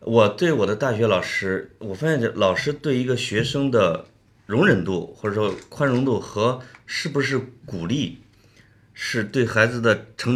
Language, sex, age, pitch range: Chinese, male, 30-49, 110-150 Hz